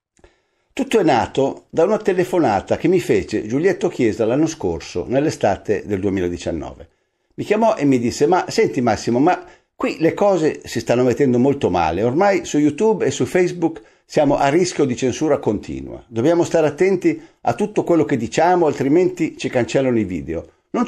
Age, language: 50-69, Italian